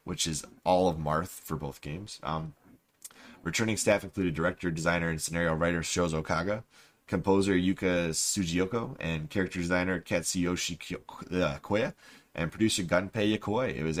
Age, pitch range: 20-39, 80-100 Hz